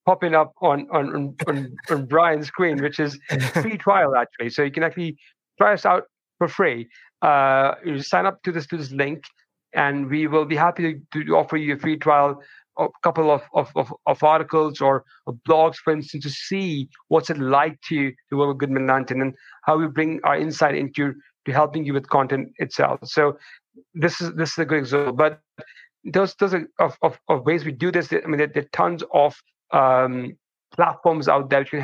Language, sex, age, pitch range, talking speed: English, male, 50-69, 140-165 Hz, 210 wpm